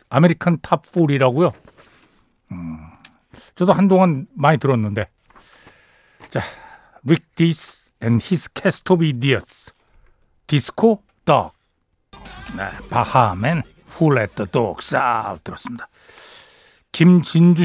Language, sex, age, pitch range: Korean, male, 60-79, 140-195 Hz